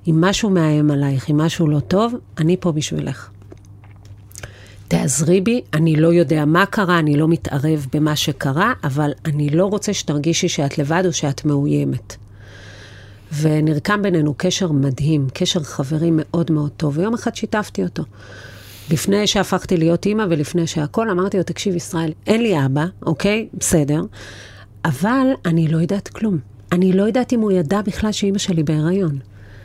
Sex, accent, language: female, native, Hebrew